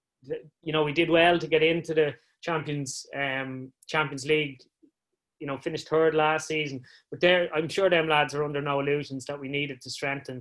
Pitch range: 140-160 Hz